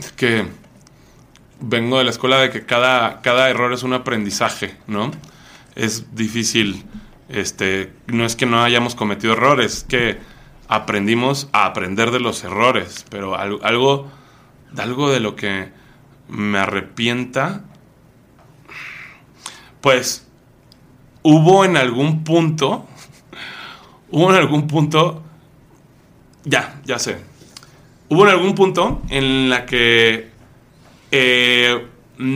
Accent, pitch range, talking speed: Mexican, 120-150 Hz, 110 wpm